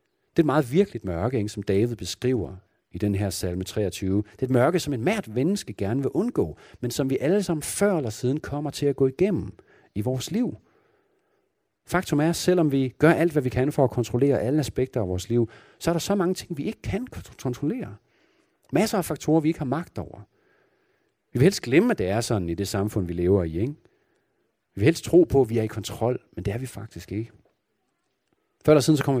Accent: native